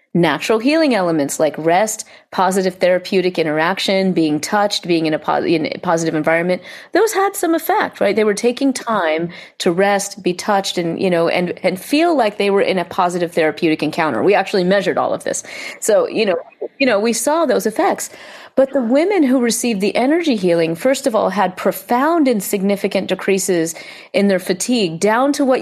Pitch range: 165-260 Hz